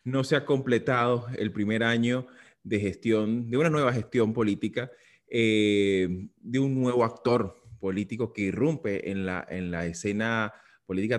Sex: male